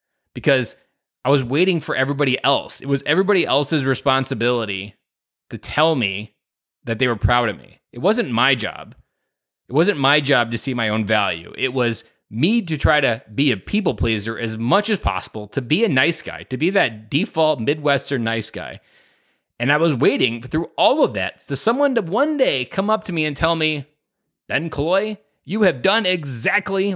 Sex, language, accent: male, English, American